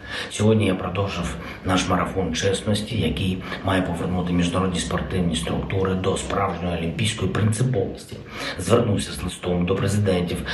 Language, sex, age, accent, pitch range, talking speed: Ukrainian, male, 50-69, native, 80-105 Hz, 120 wpm